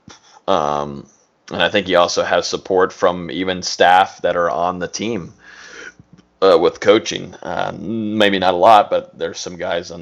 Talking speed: 175 wpm